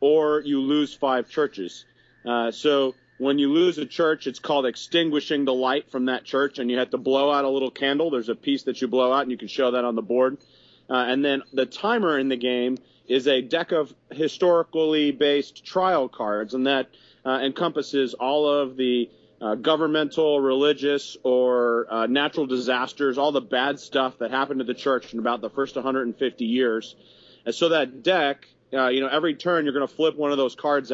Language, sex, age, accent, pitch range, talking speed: English, male, 40-59, American, 125-150 Hz, 210 wpm